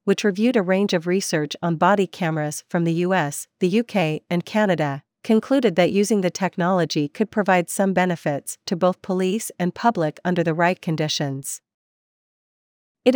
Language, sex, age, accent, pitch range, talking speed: English, female, 40-59, American, 165-205 Hz, 160 wpm